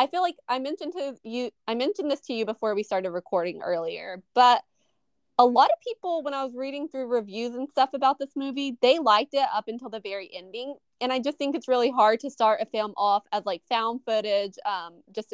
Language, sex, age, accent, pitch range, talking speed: English, female, 20-39, American, 190-250 Hz, 230 wpm